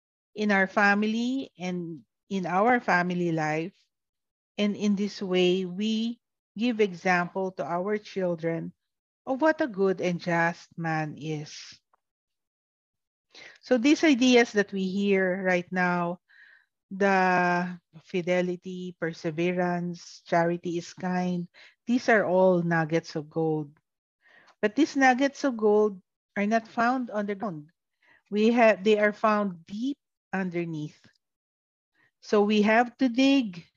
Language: English